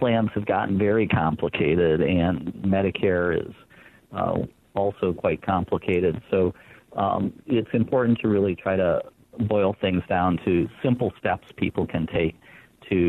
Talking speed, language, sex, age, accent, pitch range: 140 wpm, English, male, 50-69, American, 90-110 Hz